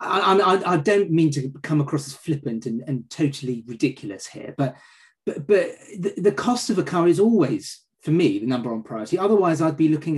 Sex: male